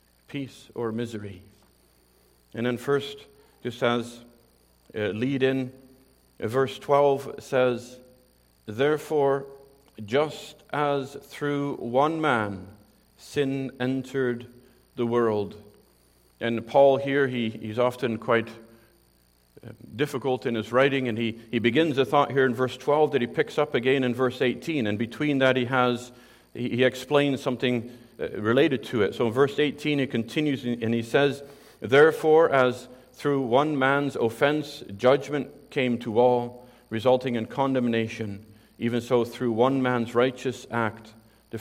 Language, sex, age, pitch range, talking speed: English, male, 50-69, 110-135 Hz, 135 wpm